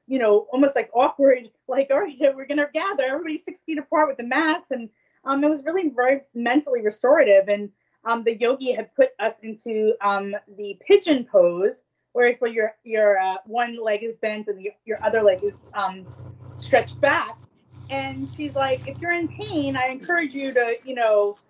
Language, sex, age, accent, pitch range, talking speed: English, female, 20-39, American, 225-300 Hz, 195 wpm